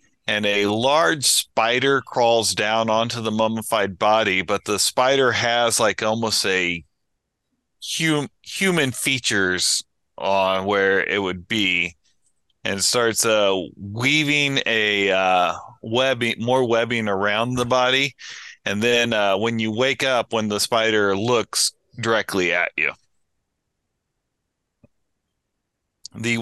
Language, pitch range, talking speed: English, 100-125 Hz, 115 wpm